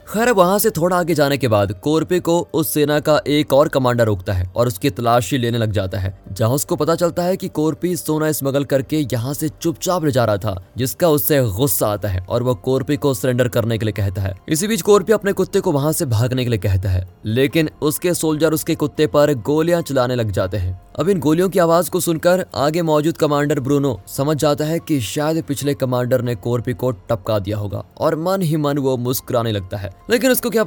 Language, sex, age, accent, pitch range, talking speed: Hindi, male, 20-39, native, 115-160 Hz, 225 wpm